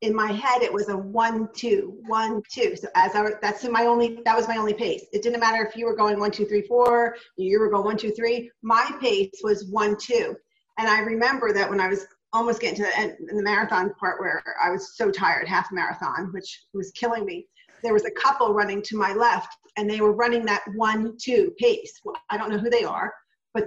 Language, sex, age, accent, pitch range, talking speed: English, female, 40-59, American, 205-240 Hz, 240 wpm